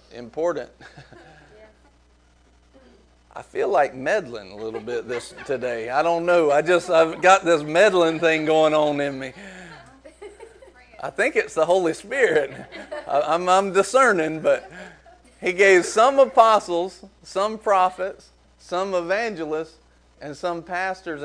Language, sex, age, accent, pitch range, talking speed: English, male, 40-59, American, 160-235 Hz, 125 wpm